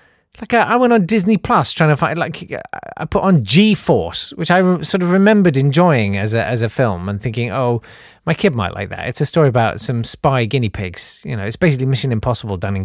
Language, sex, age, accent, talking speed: English, male, 30-49, British, 225 wpm